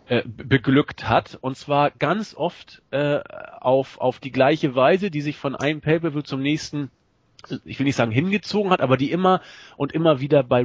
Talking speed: 180 wpm